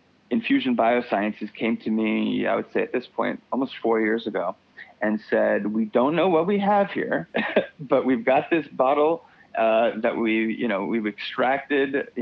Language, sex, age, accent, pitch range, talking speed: English, male, 30-49, American, 110-155 Hz, 180 wpm